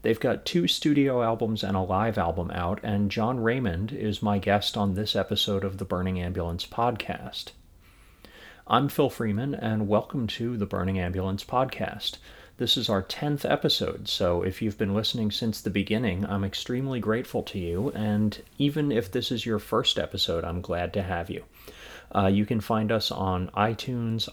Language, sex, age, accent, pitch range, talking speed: English, male, 30-49, American, 95-110 Hz, 180 wpm